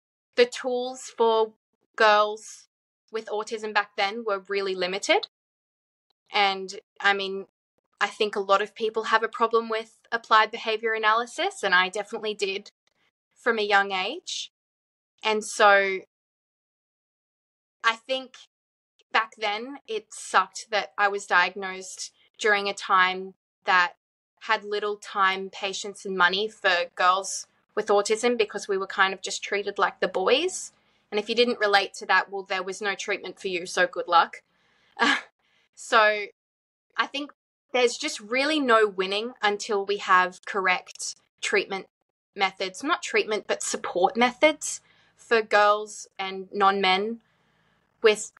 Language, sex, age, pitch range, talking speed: English, female, 20-39, 195-225 Hz, 140 wpm